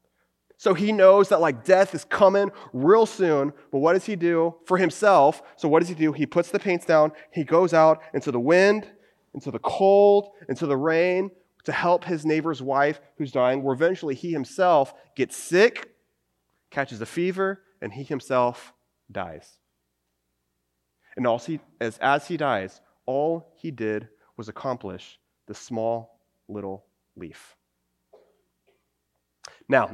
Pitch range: 105-160 Hz